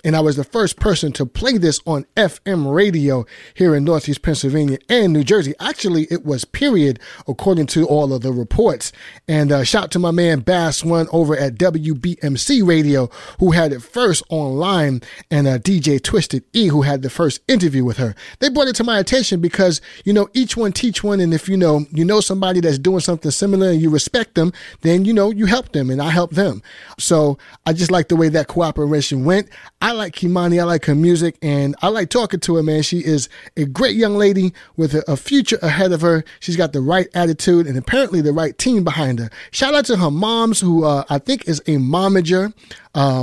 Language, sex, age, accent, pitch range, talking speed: English, male, 30-49, American, 145-190 Hz, 220 wpm